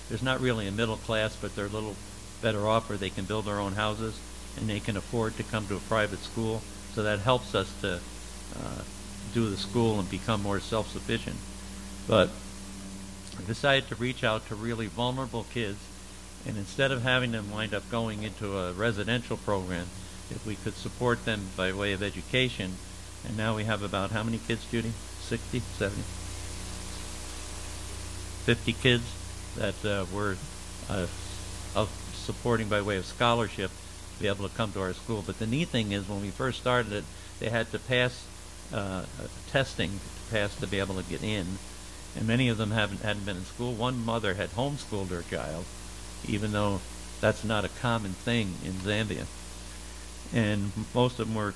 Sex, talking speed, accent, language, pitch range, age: male, 180 wpm, American, English, 95-115 Hz, 60-79